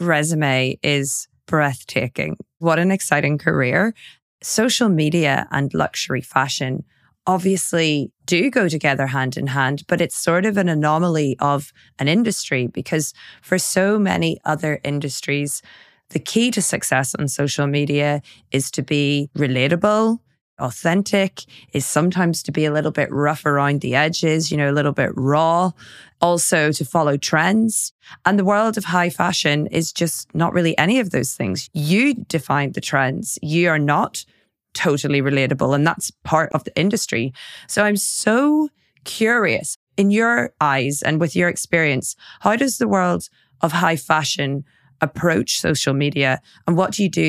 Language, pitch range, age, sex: English, 140-180 Hz, 20-39, female